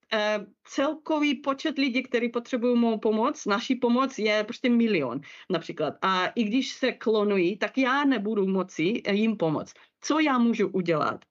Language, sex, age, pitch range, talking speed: Czech, female, 30-49, 190-240 Hz, 150 wpm